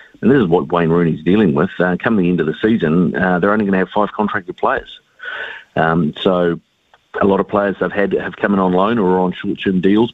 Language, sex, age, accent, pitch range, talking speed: English, male, 40-59, Australian, 90-105 Hz, 245 wpm